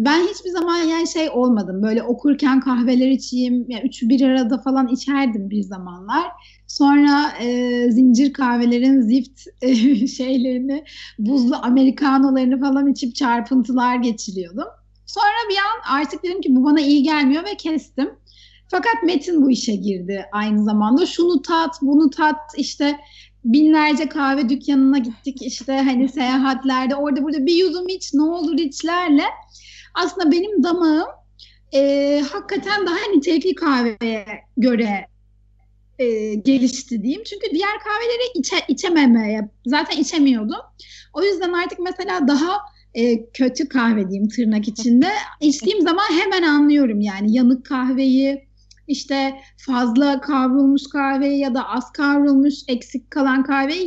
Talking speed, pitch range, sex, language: 135 wpm, 250-310 Hz, female, Turkish